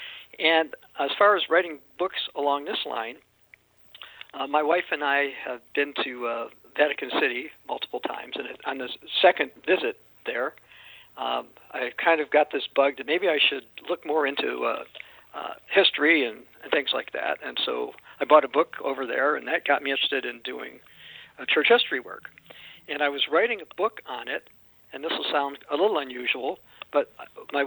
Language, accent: English, American